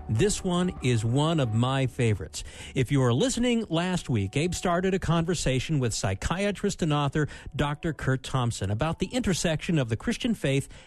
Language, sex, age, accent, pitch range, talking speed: English, male, 50-69, American, 125-175 Hz, 170 wpm